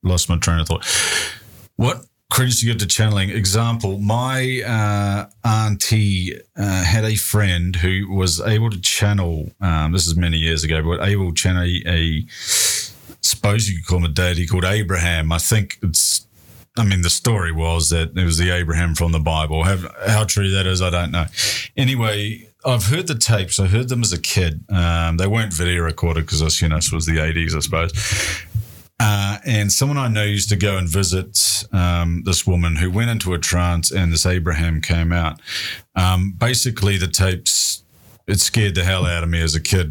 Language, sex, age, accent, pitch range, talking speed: English, male, 30-49, Australian, 85-105 Hz, 200 wpm